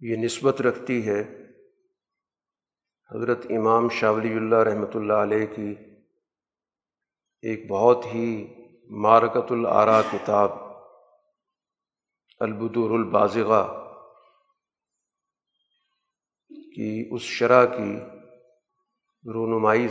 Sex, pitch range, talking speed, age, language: male, 110-135 Hz, 75 wpm, 50-69, Urdu